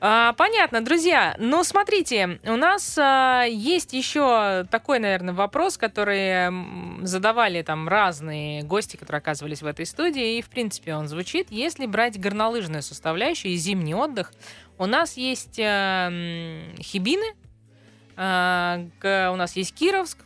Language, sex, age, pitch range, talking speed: Russian, female, 20-39, 165-240 Hz, 120 wpm